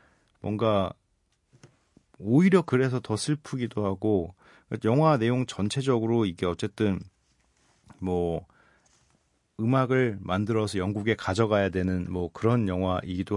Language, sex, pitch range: Korean, male, 95-125 Hz